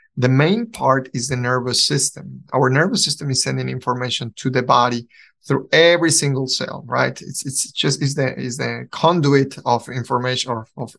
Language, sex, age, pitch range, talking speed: English, male, 30-49, 125-150 Hz, 180 wpm